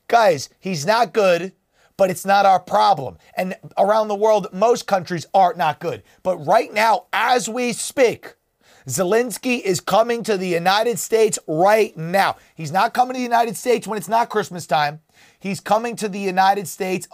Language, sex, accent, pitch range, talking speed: English, male, American, 175-225 Hz, 180 wpm